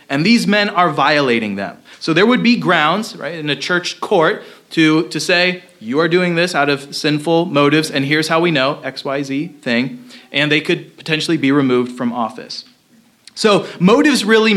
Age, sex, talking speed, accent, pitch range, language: 30-49, male, 195 wpm, American, 150-215 Hz, English